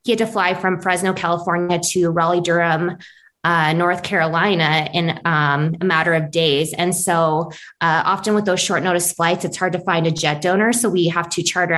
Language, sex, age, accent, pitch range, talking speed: English, female, 20-39, American, 170-185 Hz, 205 wpm